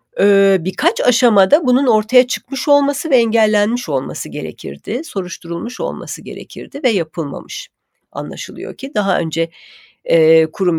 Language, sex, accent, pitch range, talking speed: Turkish, female, native, 165-245 Hz, 110 wpm